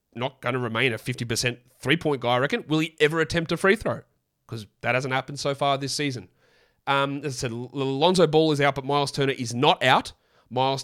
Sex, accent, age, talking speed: male, Australian, 30-49, 220 wpm